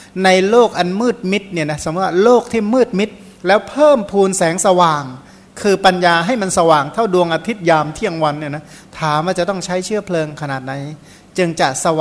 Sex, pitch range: male, 155-190 Hz